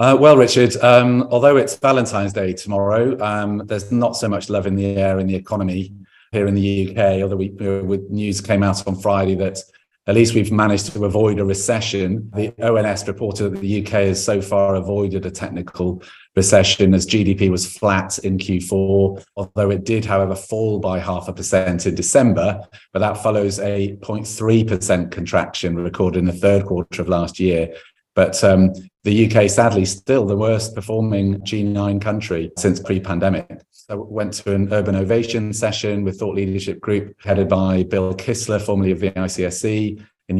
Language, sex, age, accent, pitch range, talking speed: English, male, 30-49, British, 95-105 Hz, 180 wpm